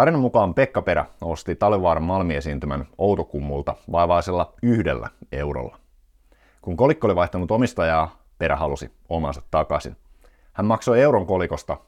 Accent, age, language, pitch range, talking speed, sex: native, 50-69, Finnish, 70-95 Hz, 120 wpm, male